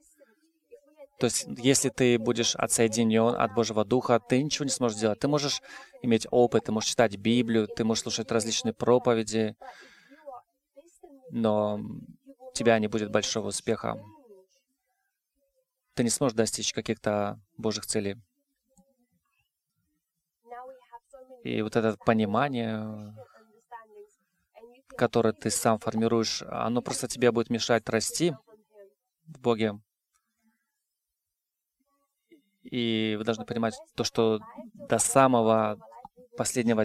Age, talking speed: 20-39, 105 wpm